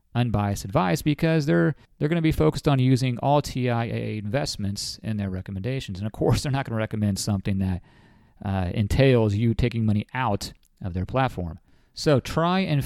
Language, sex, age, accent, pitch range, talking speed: English, male, 40-59, American, 110-140 Hz, 180 wpm